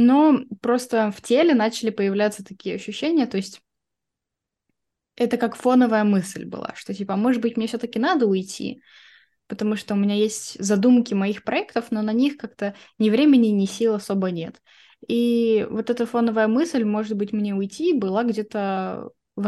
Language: Russian